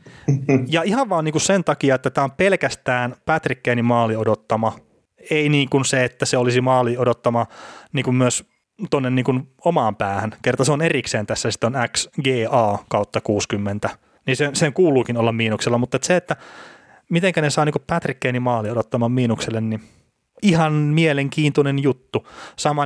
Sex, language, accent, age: male, Finnish, native, 30-49